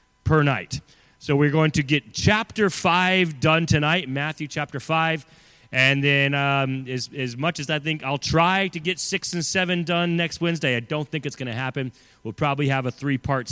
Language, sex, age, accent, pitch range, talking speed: English, male, 30-49, American, 125-165 Hz, 200 wpm